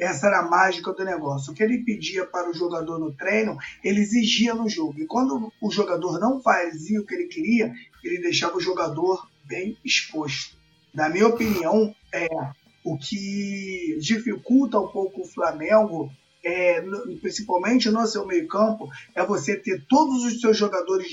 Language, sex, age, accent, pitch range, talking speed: Portuguese, male, 20-39, Brazilian, 180-230 Hz, 170 wpm